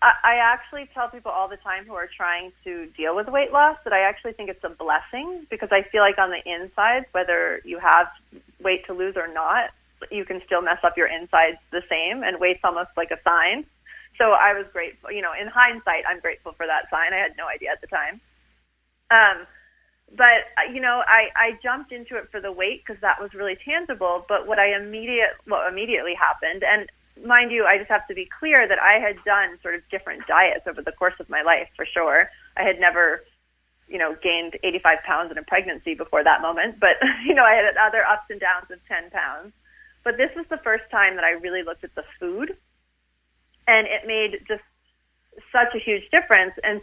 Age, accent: 30-49, American